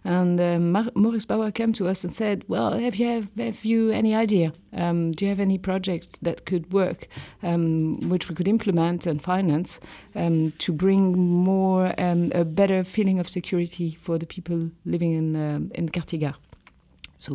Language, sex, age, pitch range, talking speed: English, female, 40-59, 165-195 Hz, 180 wpm